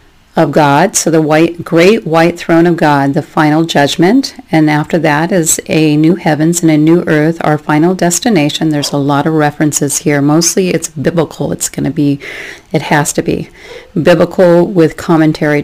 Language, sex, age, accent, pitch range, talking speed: English, female, 40-59, American, 150-170 Hz, 180 wpm